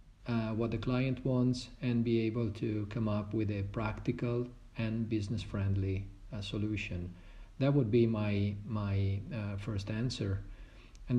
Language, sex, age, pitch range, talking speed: English, male, 50-69, 105-120 Hz, 150 wpm